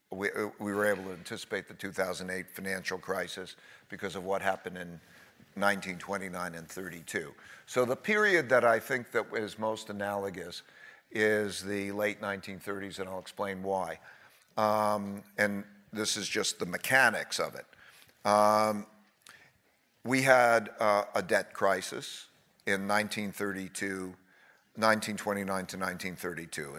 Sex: male